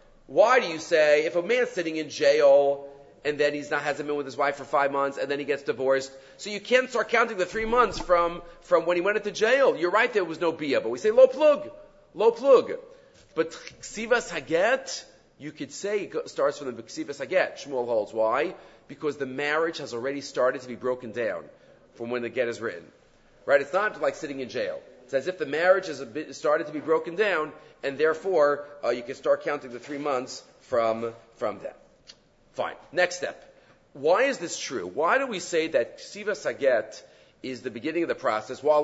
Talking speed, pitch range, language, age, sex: 210 wpm, 140-210 Hz, English, 40-59, male